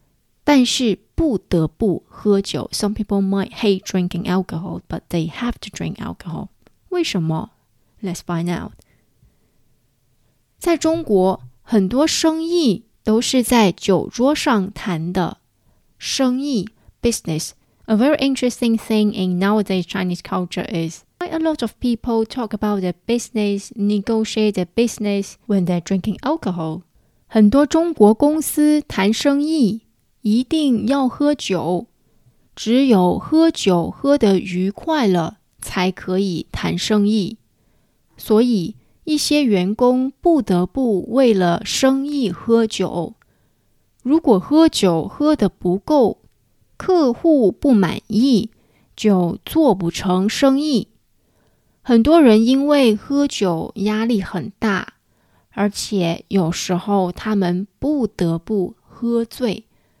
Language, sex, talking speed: English, female, 45 wpm